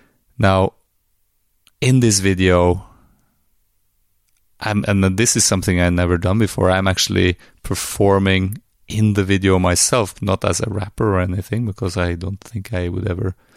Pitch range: 90-105 Hz